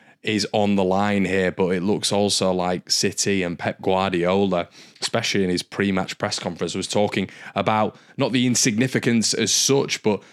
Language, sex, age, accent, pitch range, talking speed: English, male, 20-39, British, 95-110 Hz, 170 wpm